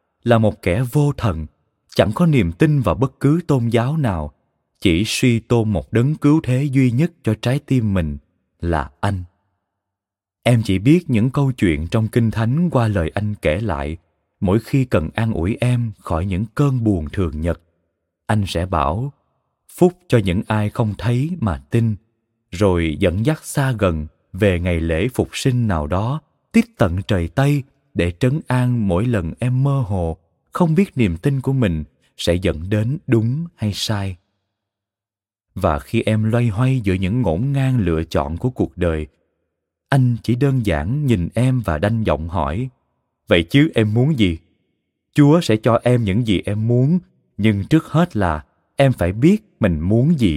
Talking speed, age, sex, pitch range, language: 180 wpm, 20-39, male, 90-130 Hz, Vietnamese